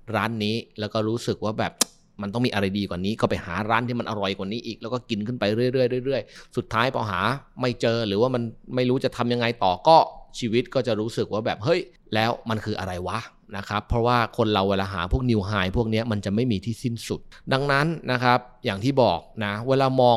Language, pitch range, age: Thai, 100-125 Hz, 20-39